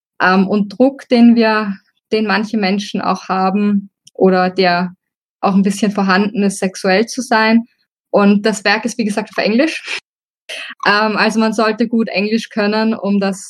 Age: 20-39